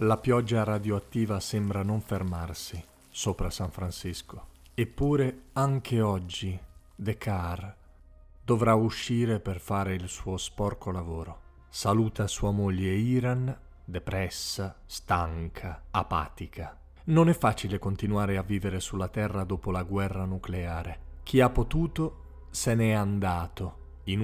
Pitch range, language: 90-110 Hz, Italian